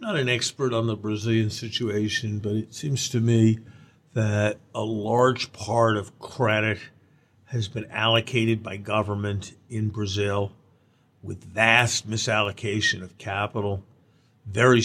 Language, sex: English, male